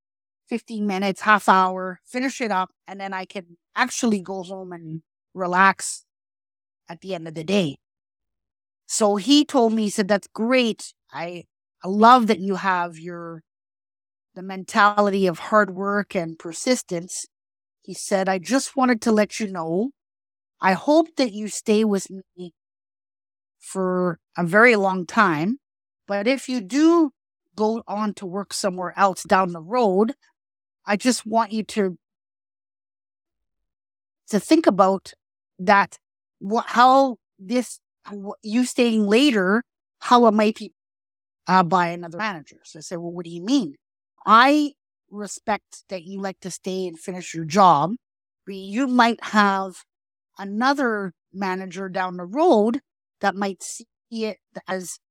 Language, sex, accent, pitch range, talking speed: English, female, American, 175-225 Hz, 145 wpm